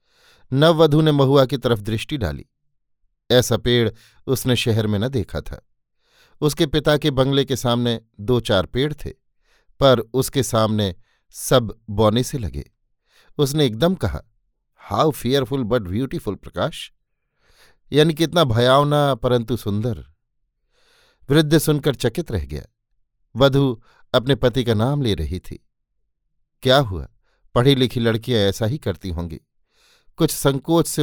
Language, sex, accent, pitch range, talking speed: Hindi, male, native, 110-140 Hz, 135 wpm